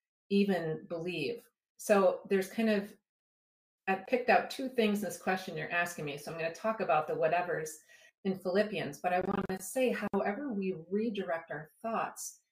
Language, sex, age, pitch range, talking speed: English, female, 40-59, 165-210 Hz, 175 wpm